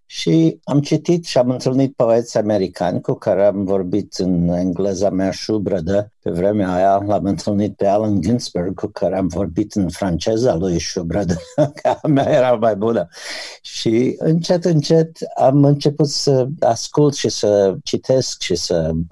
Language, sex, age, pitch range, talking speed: Romanian, male, 60-79, 95-130 Hz, 155 wpm